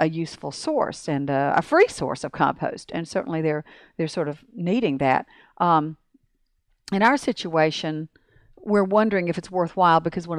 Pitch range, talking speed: 155-195 Hz, 160 wpm